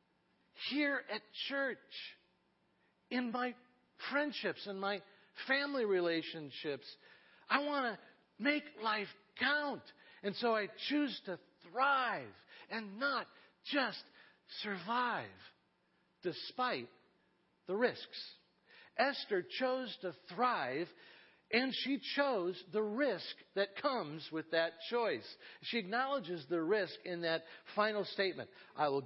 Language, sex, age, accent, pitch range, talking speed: English, male, 50-69, American, 195-265 Hz, 110 wpm